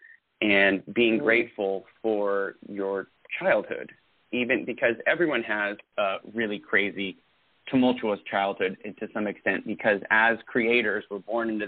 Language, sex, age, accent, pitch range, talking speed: English, male, 30-49, American, 105-120 Hz, 125 wpm